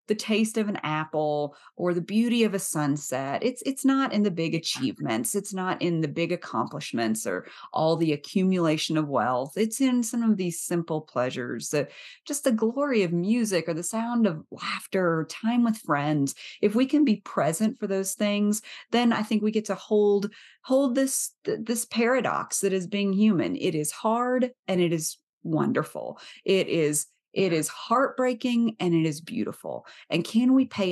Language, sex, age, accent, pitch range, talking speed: English, female, 30-49, American, 160-235 Hz, 185 wpm